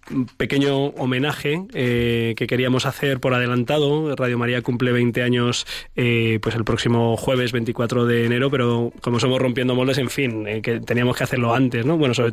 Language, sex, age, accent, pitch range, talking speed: Spanish, male, 20-39, Spanish, 120-135 Hz, 180 wpm